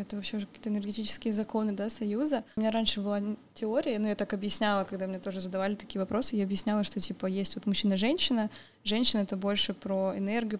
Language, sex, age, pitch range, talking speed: Russian, female, 20-39, 200-225 Hz, 205 wpm